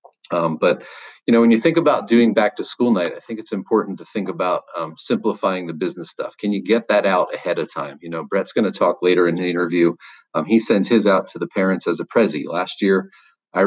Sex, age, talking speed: male, 40-59, 250 wpm